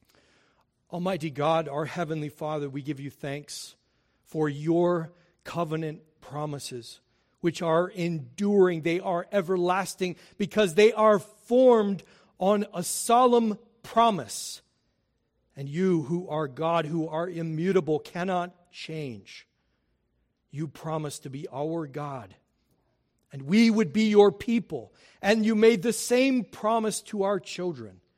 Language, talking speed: English, 125 wpm